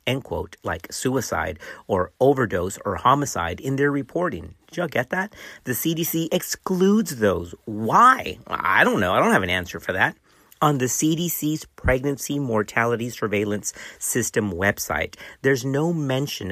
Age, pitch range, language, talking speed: 50-69, 105-150 Hz, English, 150 wpm